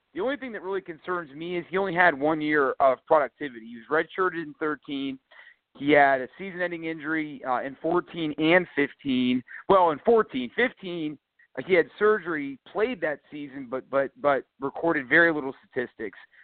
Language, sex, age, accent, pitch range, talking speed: English, male, 40-59, American, 135-175 Hz, 170 wpm